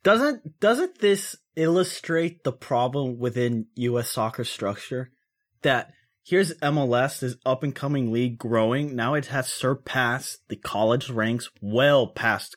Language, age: English, 20-39